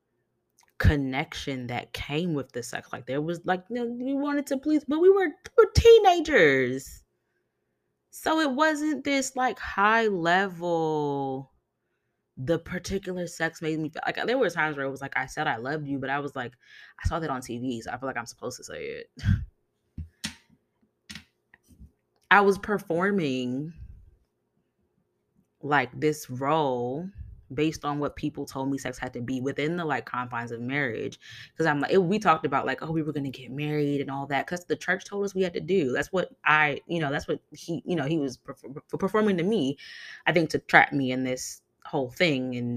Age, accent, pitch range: 20-39, American, 130-180 Hz